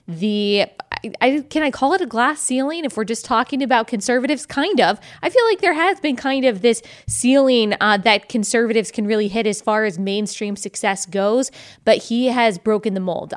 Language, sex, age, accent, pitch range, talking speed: English, female, 20-39, American, 210-250 Hz, 205 wpm